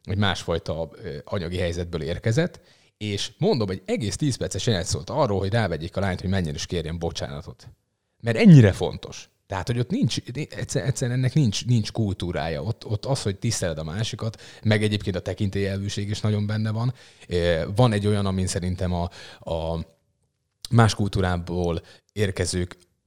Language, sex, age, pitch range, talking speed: Hungarian, male, 30-49, 90-110 Hz, 160 wpm